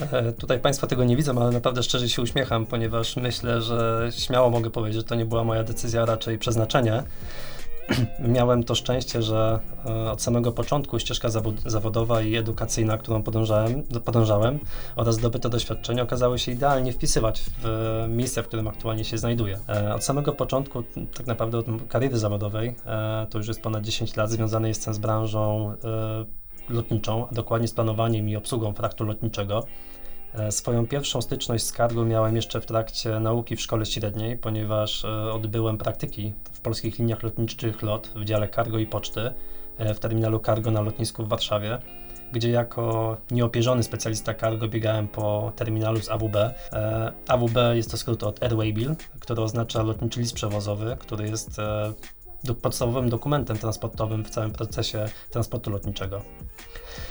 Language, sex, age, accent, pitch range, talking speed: Polish, male, 20-39, native, 110-120 Hz, 150 wpm